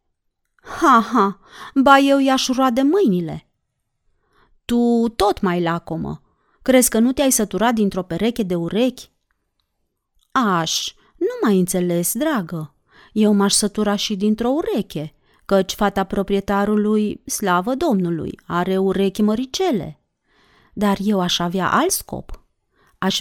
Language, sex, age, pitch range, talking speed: Romanian, female, 30-49, 195-295 Hz, 120 wpm